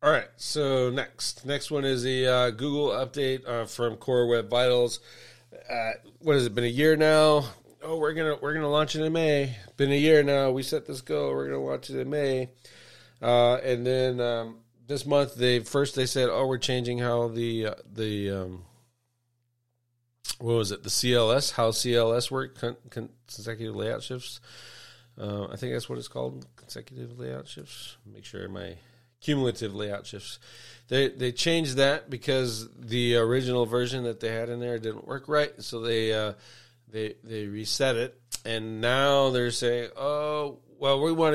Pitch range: 110-130 Hz